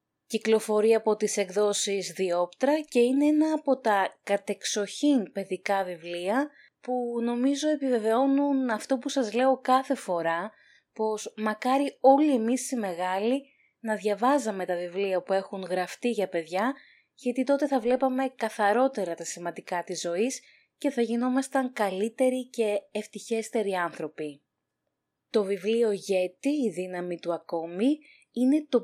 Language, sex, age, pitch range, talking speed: Greek, female, 20-39, 185-260 Hz, 130 wpm